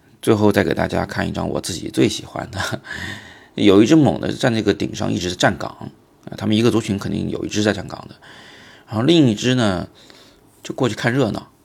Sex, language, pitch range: male, Chinese, 95-115 Hz